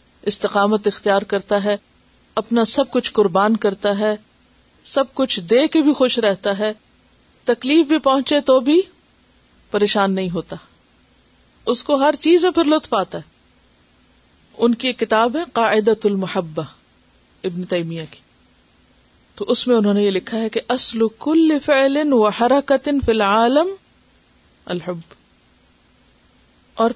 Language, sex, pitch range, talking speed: Urdu, female, 200-250 Hz, 135 wpm